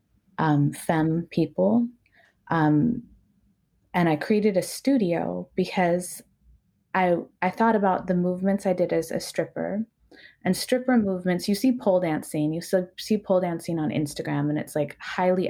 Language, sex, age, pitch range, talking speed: English, female, 20-39, 165-200 Hz, 145 wpm